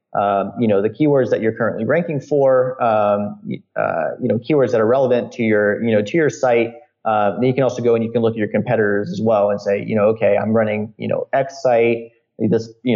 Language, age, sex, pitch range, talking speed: English, 30-49, male, 105-125 Hz, 240 wpm